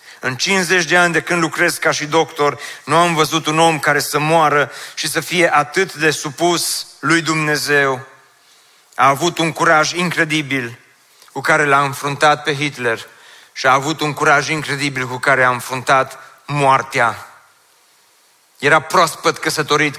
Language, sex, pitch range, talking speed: Romanian, male, 145-165 Hz, 160 wpm